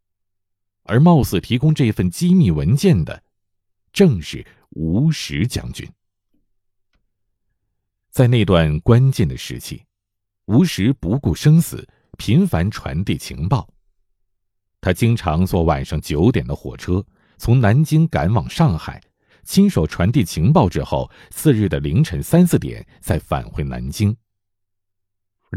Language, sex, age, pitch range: Chinese, male, 50-69, 95-130 Hz